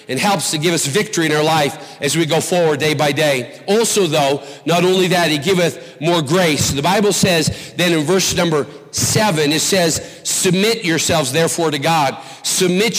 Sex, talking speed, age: male, 190 wpm, 50-69